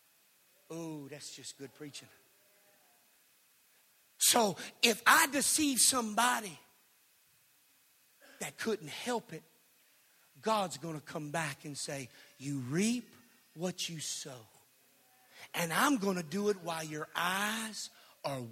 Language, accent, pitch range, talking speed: English, American, 150-240 Hz, 115 wpm